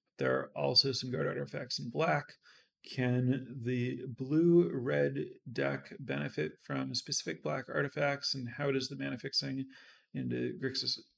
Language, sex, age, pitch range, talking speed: English, male, 30-49, 125-140 Hz, 135 wpm